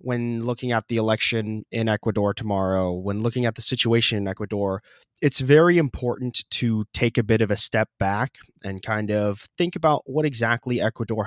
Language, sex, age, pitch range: English, male, 20-39, 105-130 Hz